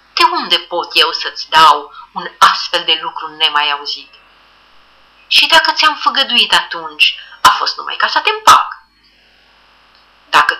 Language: Romanian